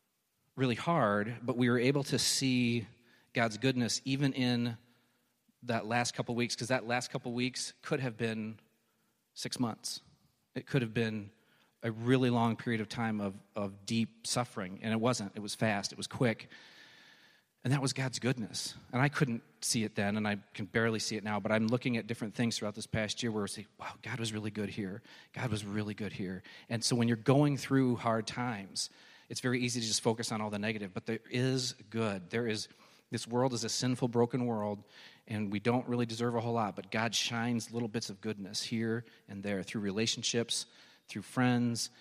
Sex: male